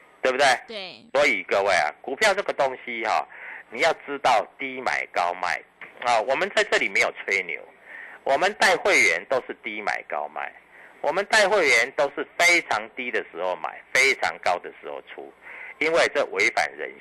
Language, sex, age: Chinese, male, 50-69